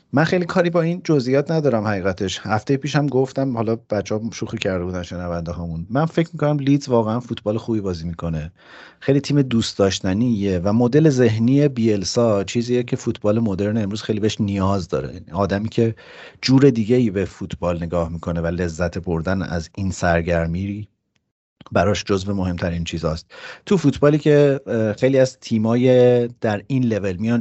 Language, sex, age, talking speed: Persian, male, 40-59, 160 wpm